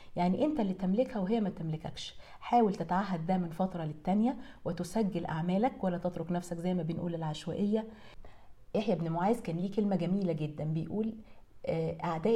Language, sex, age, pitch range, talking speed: English, female, 40-59, 170-215 Hz, 155 wpm